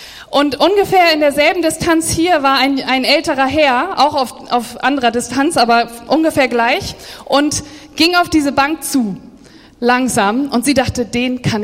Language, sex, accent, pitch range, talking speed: German, female, German, 265-320 Hz, 160 wpm